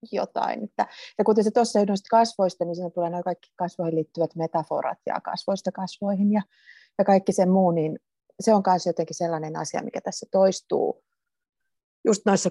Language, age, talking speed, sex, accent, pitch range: Finnish, 30-49, 170 wpm, female, native, 165-200 Hz